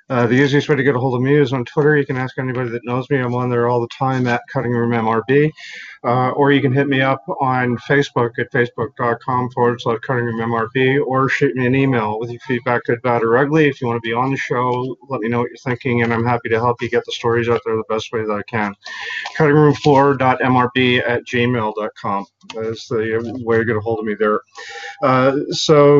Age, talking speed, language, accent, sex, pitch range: 30-49, 240 wpm, English, American, male, 115-135 Hz